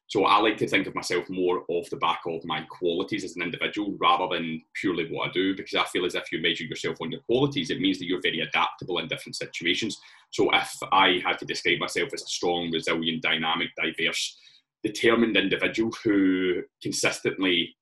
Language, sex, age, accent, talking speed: English, male, 20-39, British, 200 wpm